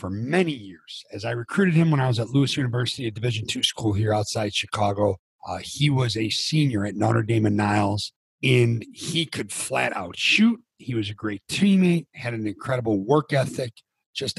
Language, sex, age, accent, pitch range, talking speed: English, male, 40-59, American, 110-150 Hz, 195 wpm